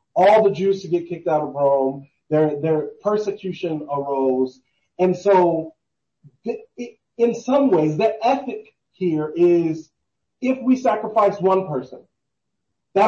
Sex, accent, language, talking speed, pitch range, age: male, American, English, 140 wpm, 160-215 Hz, 30-49